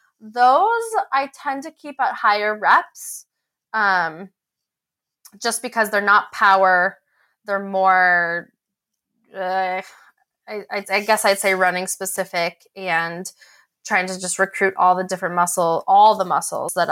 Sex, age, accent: female, 20-39, American